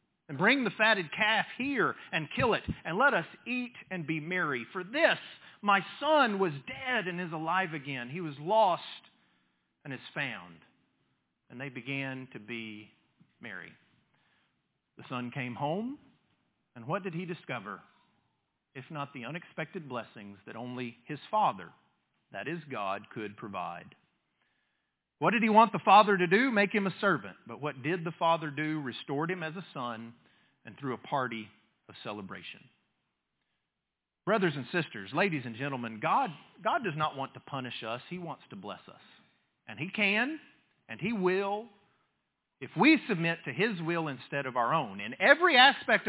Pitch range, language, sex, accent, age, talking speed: 135-205 Hz, English, male, American, 40-59, 165 wpm